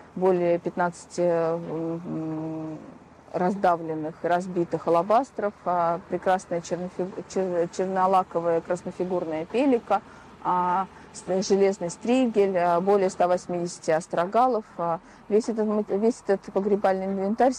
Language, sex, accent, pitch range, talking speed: Russian, female, native, 165-195 Hz, 75 wpm